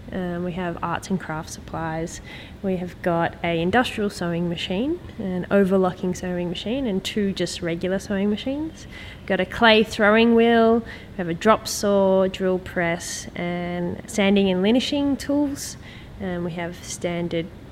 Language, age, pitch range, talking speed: English, 20-39, 170-200 Hz, 155 wpm